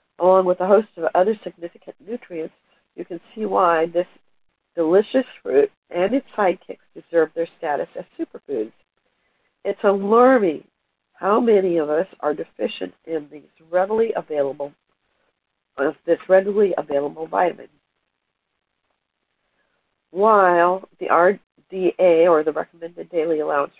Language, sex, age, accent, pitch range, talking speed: English, female, 60-79, American, 160-215 Hz, 120 wpm